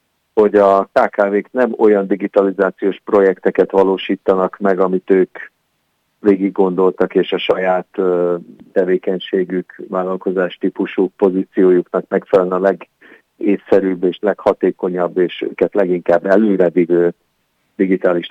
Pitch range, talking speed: 90-100 Hz, 100 wpm